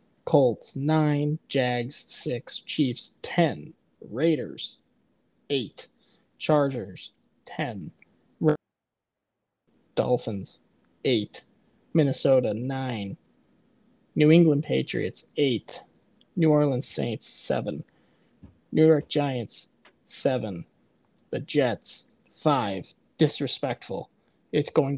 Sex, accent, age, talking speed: male, American, 20-39, 75 wpm